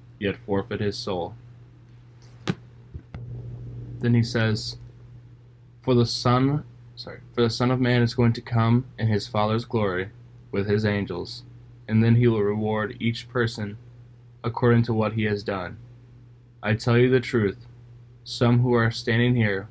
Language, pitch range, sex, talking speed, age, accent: English, 105-120 Hz, male, 150 wpm, 20-39, American